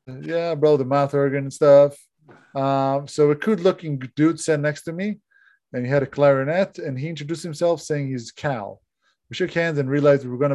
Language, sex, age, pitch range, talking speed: Hebrew, male, 20-39, 125-155 Hz, 210 wpm